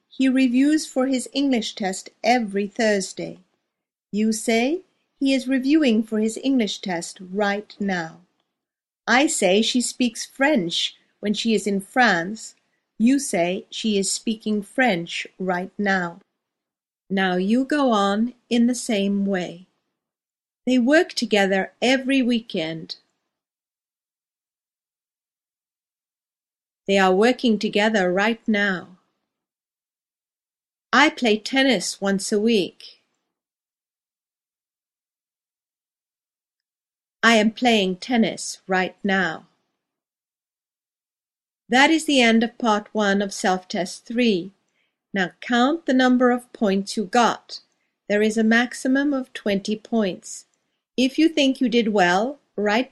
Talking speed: 115 wpm